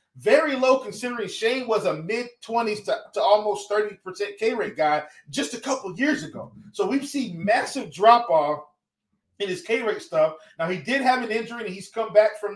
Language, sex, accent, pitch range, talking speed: English, male, American, 185-225 Hz, 180 wpm